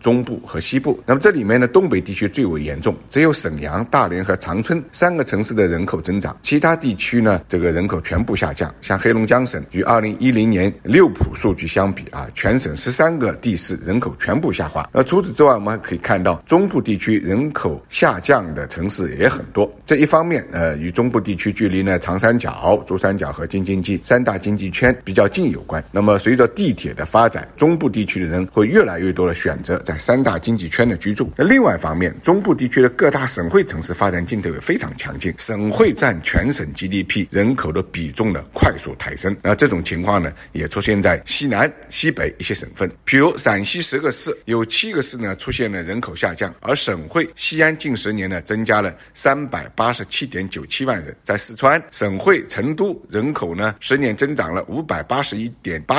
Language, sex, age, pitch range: Chinese, male, 50-69, 95-120 Hz